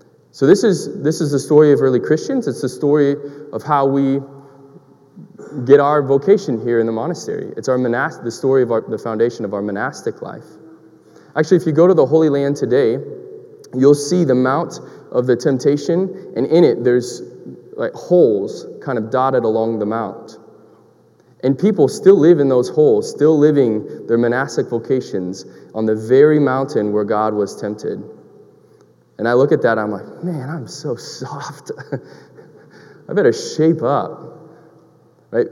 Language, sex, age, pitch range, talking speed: English, male, 20-39, 120-160 Hz, 170 wpm